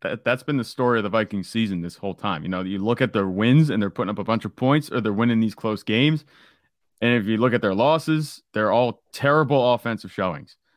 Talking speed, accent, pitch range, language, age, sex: 245 wpm, American, 105-140 Hz, English, 30-49, male